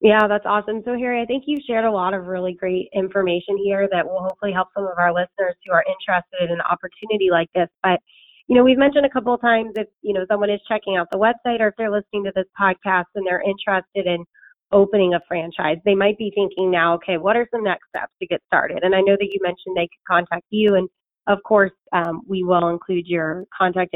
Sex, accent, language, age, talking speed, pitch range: female, American, English, 30-49, 245 wpm, 175-210 Hz